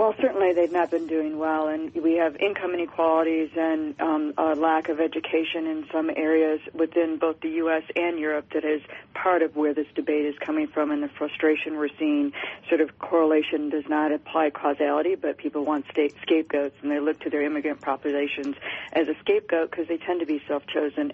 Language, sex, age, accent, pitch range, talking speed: English, female, 40-59, American, 150-165 Hz, 195 wpm